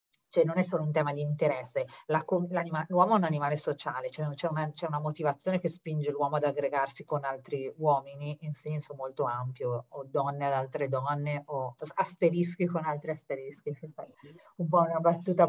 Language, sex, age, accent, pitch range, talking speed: Italian, female, 40-59, native, 145-175 Hz, 165 wpm